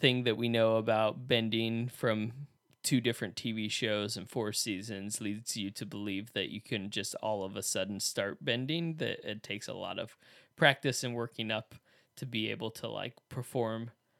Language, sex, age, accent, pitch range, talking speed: English, male, 20-39, American, 110-130 Hz, 185 wpm